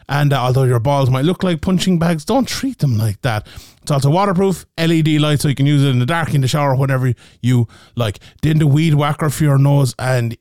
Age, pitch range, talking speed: 30-49, 130-160 Hz, 240 wpm